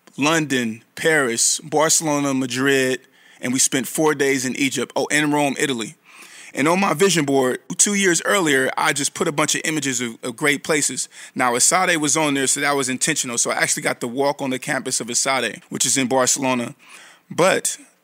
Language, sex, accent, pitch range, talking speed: English, male, American, 130-150 Hz, 195 wpm